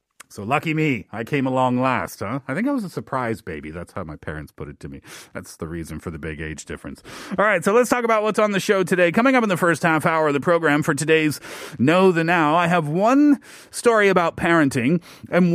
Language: Korean